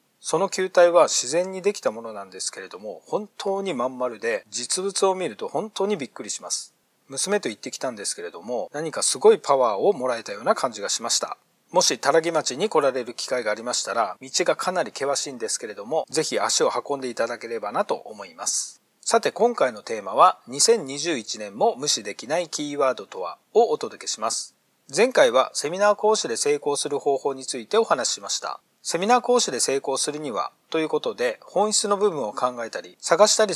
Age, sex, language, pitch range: 40-59, male, Japanese, 145-215 Hz